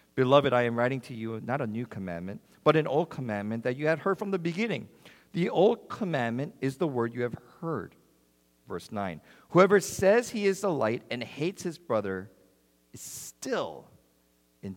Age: 50-69